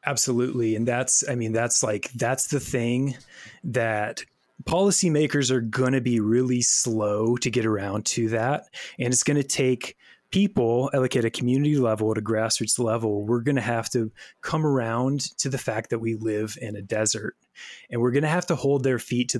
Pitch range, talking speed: 115-140 Hz, 195 wpm